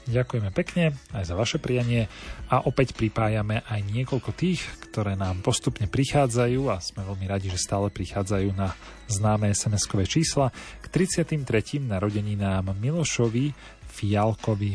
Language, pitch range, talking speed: Slovak, 100-130 Hz, 135 wpm